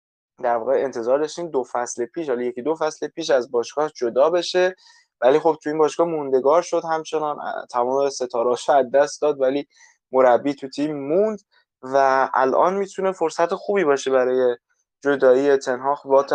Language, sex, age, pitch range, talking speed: Persian, male, 20-39, 120-150 Hz, 155 wpm